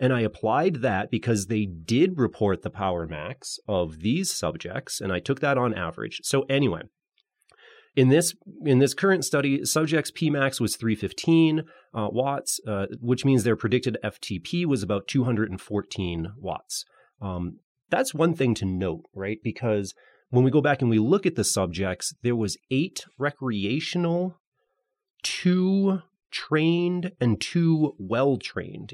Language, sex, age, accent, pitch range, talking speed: English, male, 30-49, American, 100-145 Hz, 150 wpm